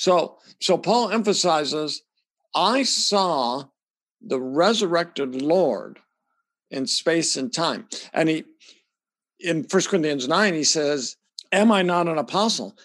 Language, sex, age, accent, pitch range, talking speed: English, male, 60-79, American, 140-205 Hz, 120 wpm